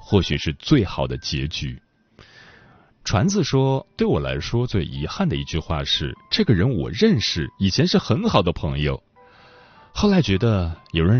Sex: male